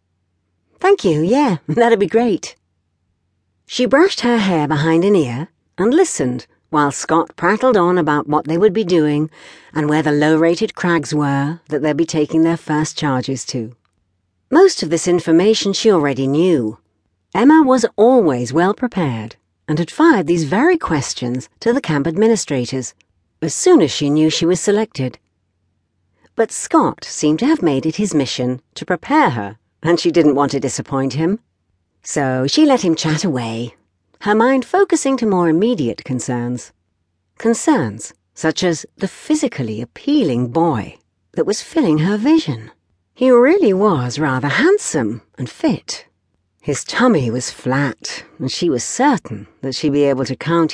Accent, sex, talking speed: British, female, 155 wpm